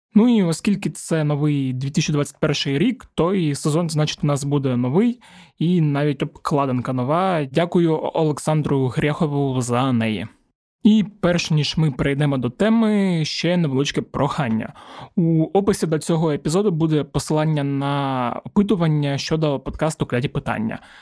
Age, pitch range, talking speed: 20-39, 145-175 Hz, 130 wpm